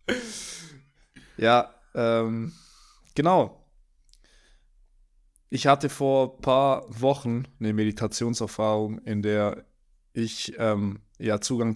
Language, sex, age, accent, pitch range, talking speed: German, male, 20-39, German, 105-120 Hz, 85 wpm